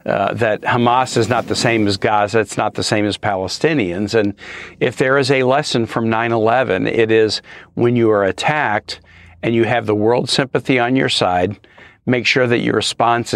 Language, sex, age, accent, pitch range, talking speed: English, male, 50-69, American, 110-125 Hz, 195 wpm